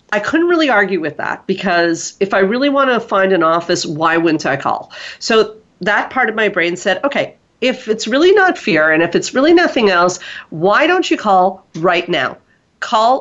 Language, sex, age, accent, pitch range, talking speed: English, female, 40-59, American, 165-210 Hz, 205 wpm